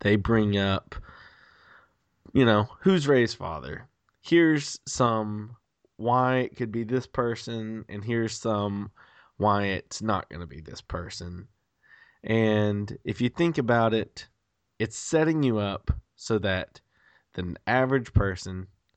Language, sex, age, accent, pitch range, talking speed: English, male, 20-39, American, 95-125 Hz, 135 wpm